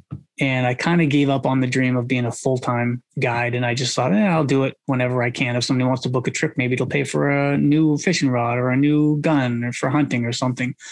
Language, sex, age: English, male, 20-39